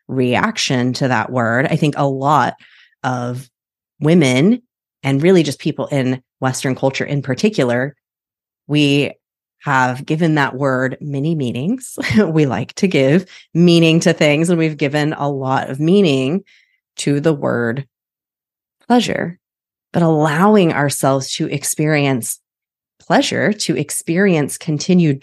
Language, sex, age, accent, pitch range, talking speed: English, female, 30-49, American, 130-165 Hz, 125 wpm